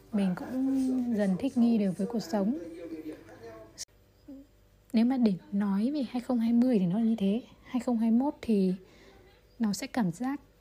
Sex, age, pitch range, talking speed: female, 20-39, 195-250 Hz, 145 wpm